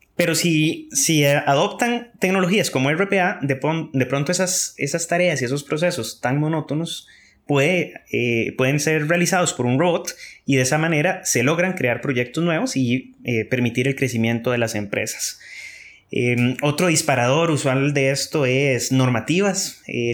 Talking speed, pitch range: 150 wpm, 130-175 Hz